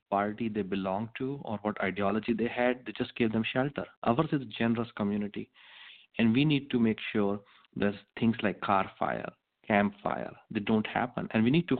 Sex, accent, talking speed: male, Indian, 200 wpm